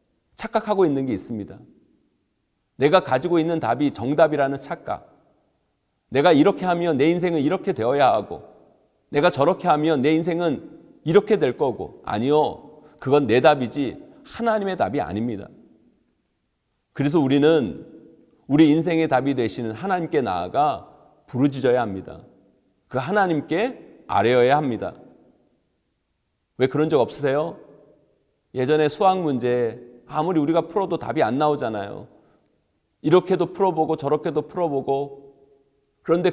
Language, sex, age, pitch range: Korean, male, 40-59, 135-170 Hz